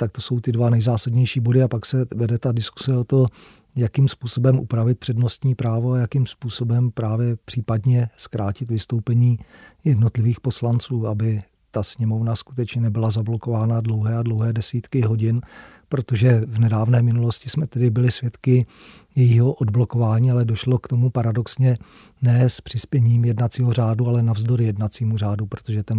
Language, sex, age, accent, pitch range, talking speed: Czech, male, 40-59, native, 115-125 Hz, 150 wpm